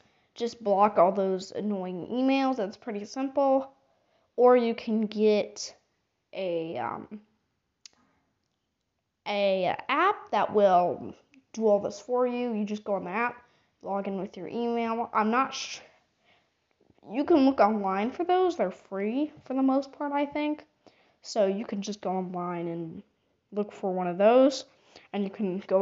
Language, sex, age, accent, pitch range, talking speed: English, female, 20-39, American, 200-295 Hz, 160 wpm